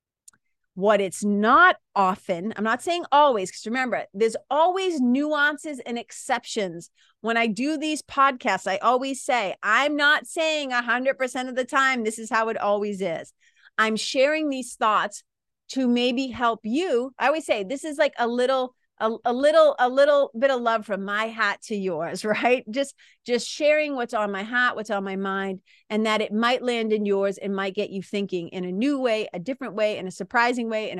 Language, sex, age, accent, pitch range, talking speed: English, female, 30-49, American, 200-255 Hz, 195 wpm